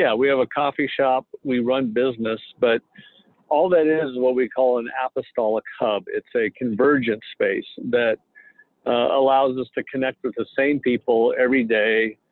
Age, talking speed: 50-69, 175 wpm